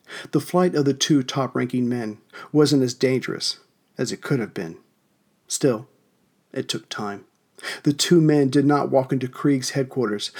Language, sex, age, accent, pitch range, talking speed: English, male, 40-59, American, 125-145 Hz, 160 wpm